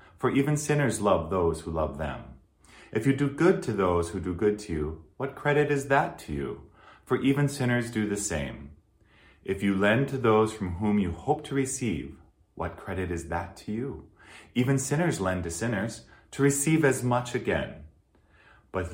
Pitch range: 80-110 Hz